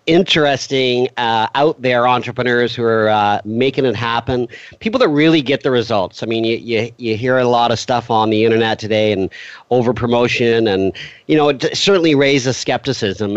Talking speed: 180 wpm